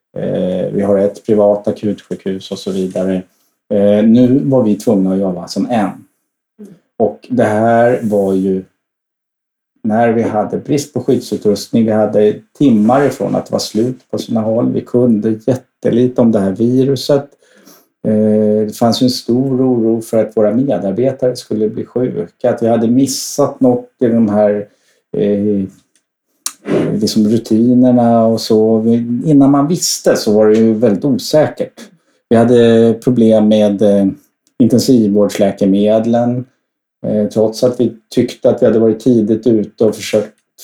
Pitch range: 105-120 Hz